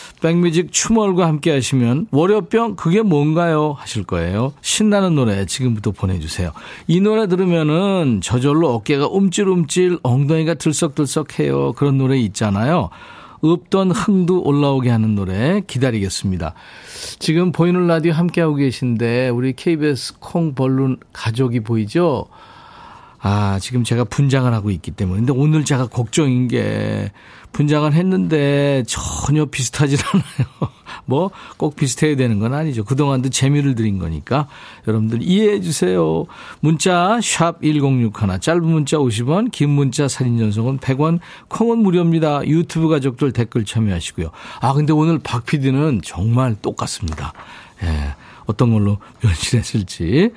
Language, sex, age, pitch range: Korean, male, 40-59, 115-170 Hz